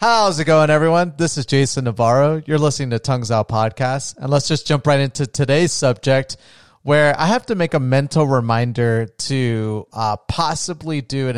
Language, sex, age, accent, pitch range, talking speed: English, male, 30-49, American, 120-150 Hz, 185 wpm